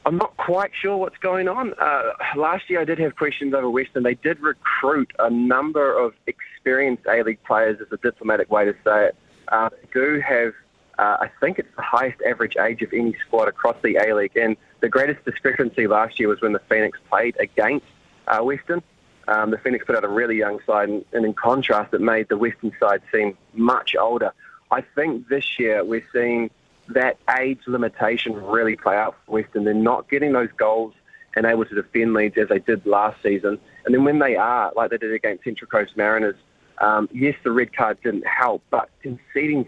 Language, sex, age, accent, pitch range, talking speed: English, male, 20-39, Australian, 105-135 Hz, 200 wpm